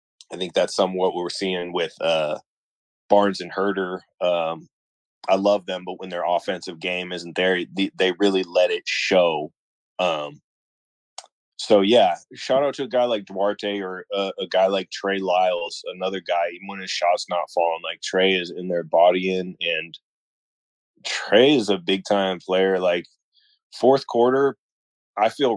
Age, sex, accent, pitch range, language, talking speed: 20-39, male, American, 85-100 Hz, English, 170 wpm